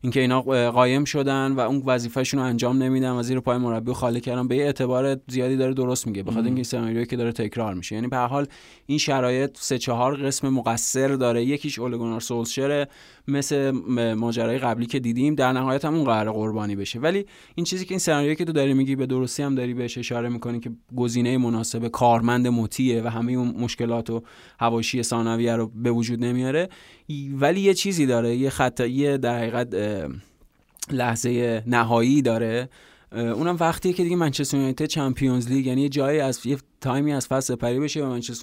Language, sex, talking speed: Persian, male, 185 wpm